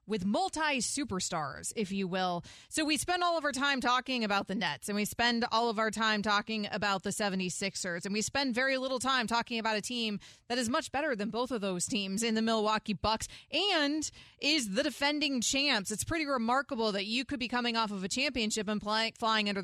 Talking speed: 215 wpm